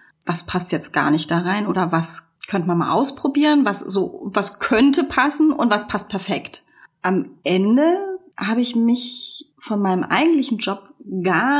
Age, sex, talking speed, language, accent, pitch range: 30-49, female, 165 wpm, German, German, 185-250 Hz